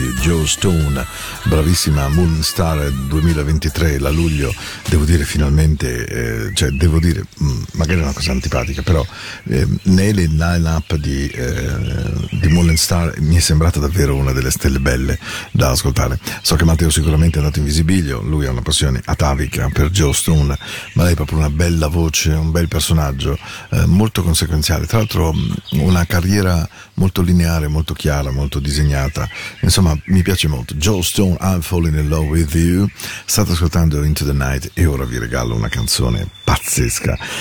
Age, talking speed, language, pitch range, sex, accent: 50-69, 165 wpm, Spanish, 75-90 Hz, male, Italian